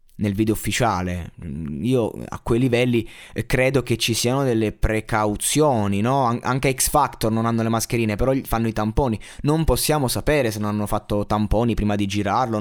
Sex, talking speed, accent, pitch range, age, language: male, 175 wpm, native, 105-145 Hz, 20-39, Italian